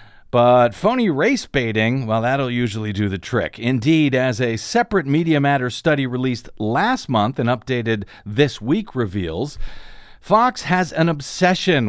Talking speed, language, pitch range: 145 wpm, English, 125-170 Hz